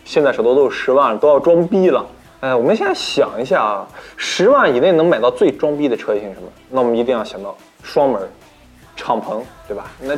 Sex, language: male, Chinese